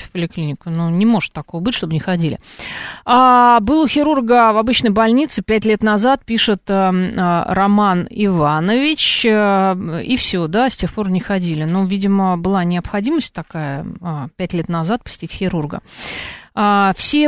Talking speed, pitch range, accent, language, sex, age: 165 wpm, 175-225 Hz, native, Russian, female, 30-49